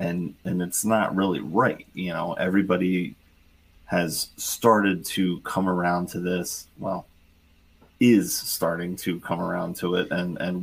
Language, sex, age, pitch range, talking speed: English, male, 30-49, 80-95 Hz, 145 wpm